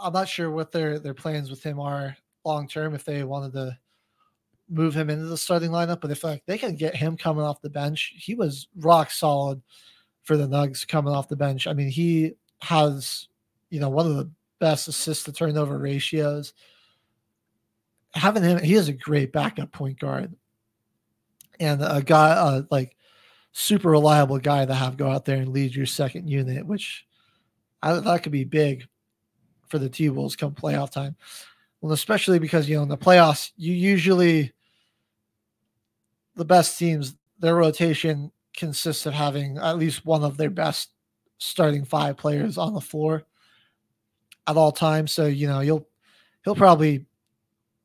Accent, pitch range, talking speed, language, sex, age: American, 140-160 Hz, 170 wpm, English, male, 20-39